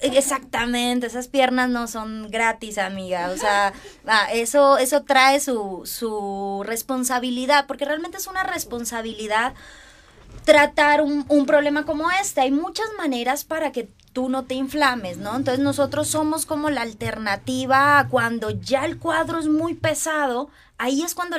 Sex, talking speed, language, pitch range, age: female, 145 wpm, Spanish, 240-305 Hz, 20-39